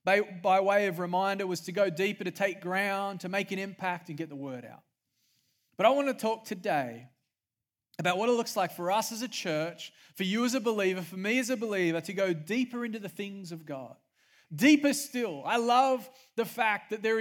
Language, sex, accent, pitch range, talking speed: English, male, Australian, 170-225 Hz, 215 wpm